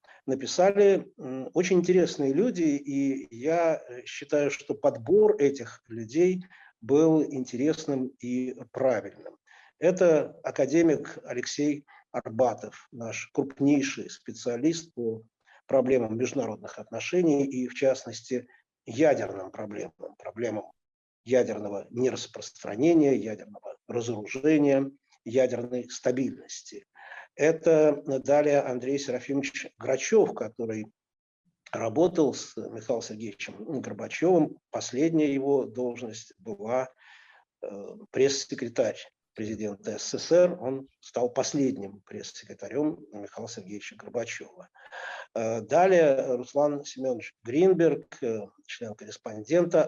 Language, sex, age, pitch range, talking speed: Russian, male, 50-69, 125-155 Hz, 80 wpm